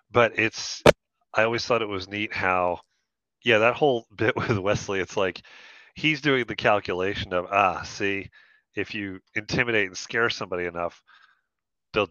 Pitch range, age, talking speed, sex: 90-120 Hz, 30-49, 160 wpm, male